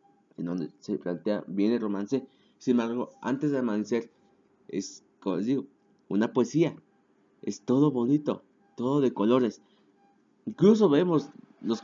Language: Spanish